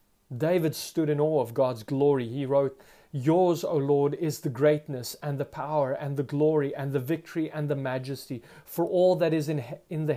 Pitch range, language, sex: 120-150 Hz, English, male